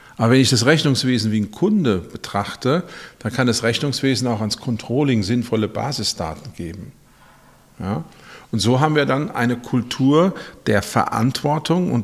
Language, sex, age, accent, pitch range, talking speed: German, male, 50-69, German, 105-140 Hz, 150 wpm